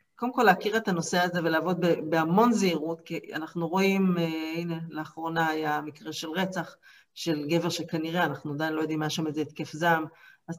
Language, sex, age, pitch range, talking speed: Hebrew, female, 50-69, 160-205 Hz, 195 wpm